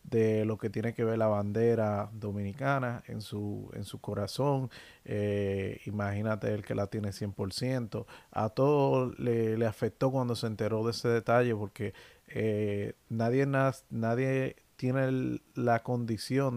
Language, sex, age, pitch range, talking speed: Spanish, male, 30-49, 110-130 Hz, 150 wpm